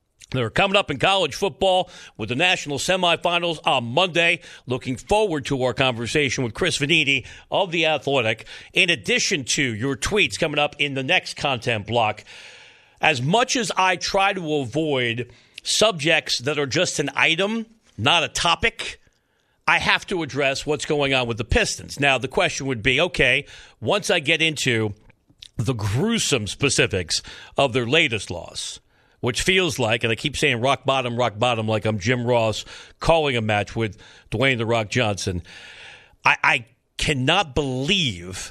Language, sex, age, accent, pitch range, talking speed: English, male, 50-69, American, 120-170 Hz, 165 wpm